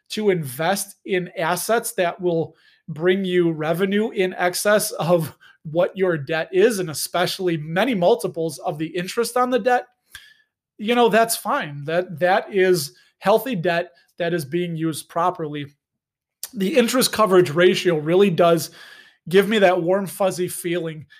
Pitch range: 165-200 Hz